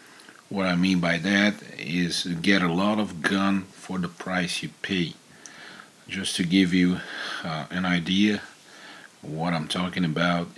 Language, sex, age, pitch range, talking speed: English, male, 50-69, 85-100 Hz, 155 wpm